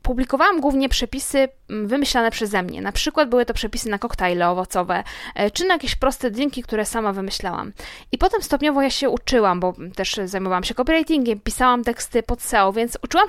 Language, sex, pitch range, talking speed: Polish, female, 205-270 Hz, 175 wpm